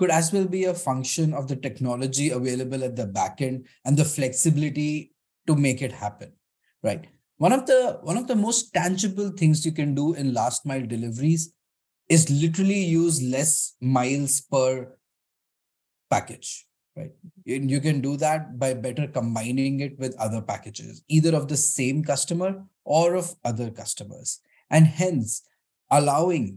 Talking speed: 155 wpm